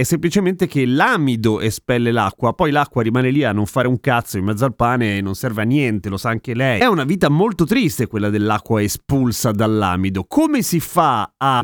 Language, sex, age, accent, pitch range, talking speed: Italian, male, 30-49, native, 110-155 Hz, 210 wpm